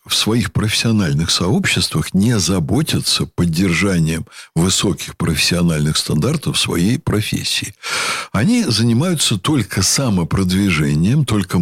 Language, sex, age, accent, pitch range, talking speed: Russian, male, 60-79, native, 105-145 Hz, 90 wpm